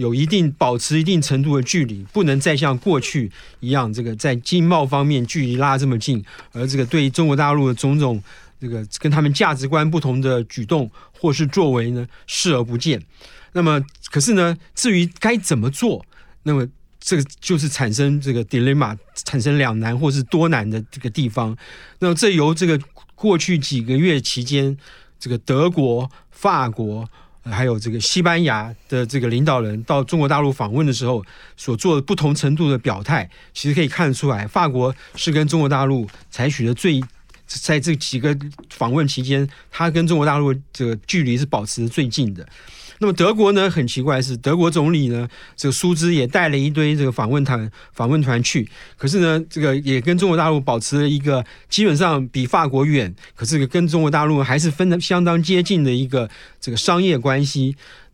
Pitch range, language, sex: 125-160 Hz, Chinese, male